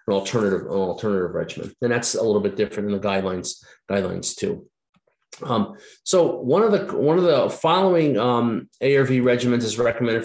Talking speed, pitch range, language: 175 wpm, 100-125 Hz, English